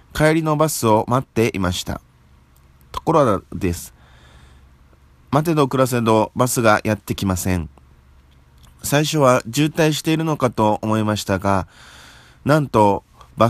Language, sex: Japanese, male